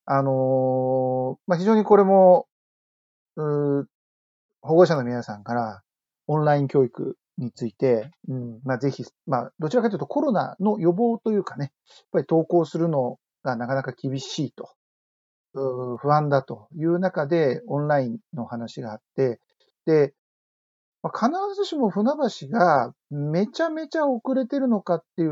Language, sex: Japanese, male